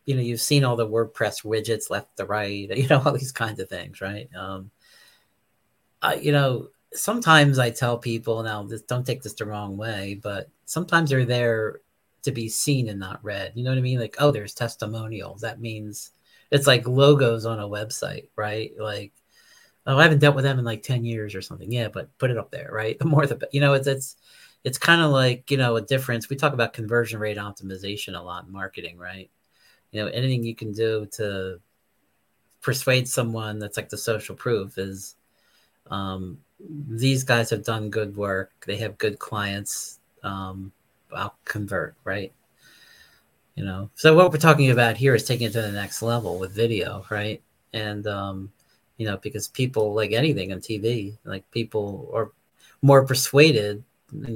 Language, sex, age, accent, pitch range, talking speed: English, male, 40-59, American, 105-130 Hz, 190 wpm